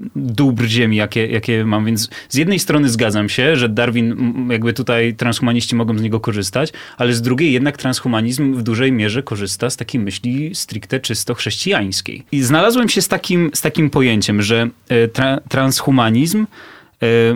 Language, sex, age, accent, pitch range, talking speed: Polish, male, 30-49, native, 110-135 Hz, 160 wpm